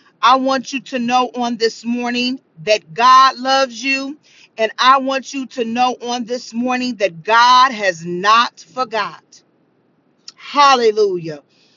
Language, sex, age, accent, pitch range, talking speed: English, female, 40-59, American, 210-255 Hz, 140 wpm